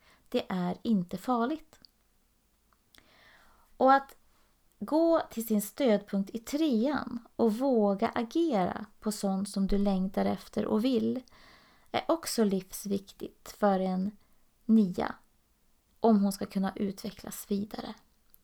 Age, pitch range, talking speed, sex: 30-49, 200-250 Hz, 115 wpm, female